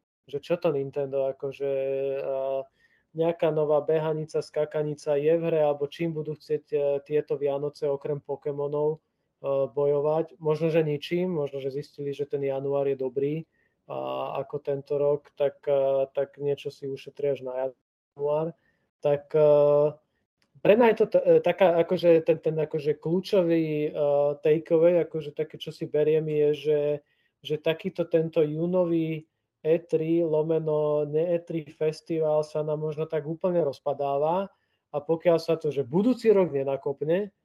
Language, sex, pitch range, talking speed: Slovak, male, 140-155 Hz, 145 wpm